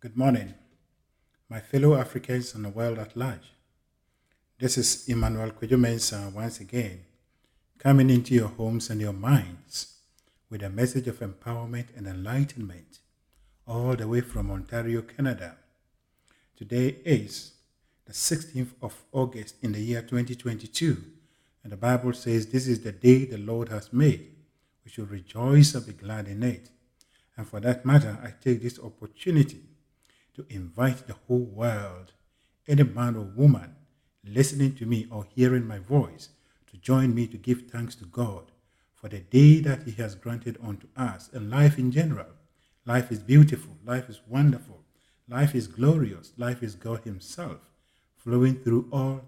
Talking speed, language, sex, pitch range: 155 wpm, English, male, 105-130 Hz